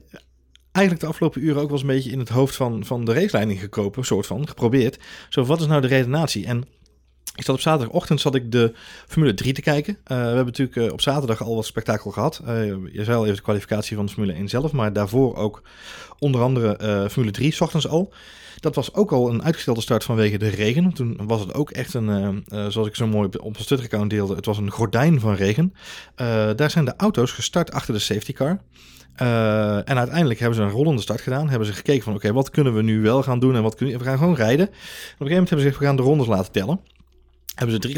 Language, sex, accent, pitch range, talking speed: Dutch, male, Dutch, 105-145 Hz, 250 wpm